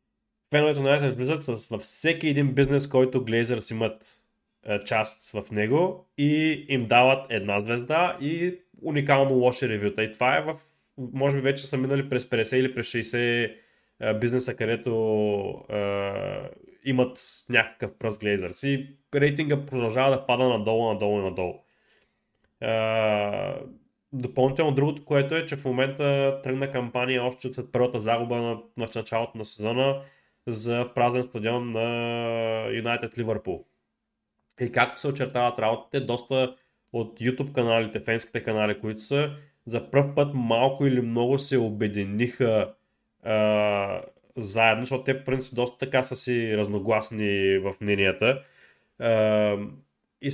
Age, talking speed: 20-39, 135 wpm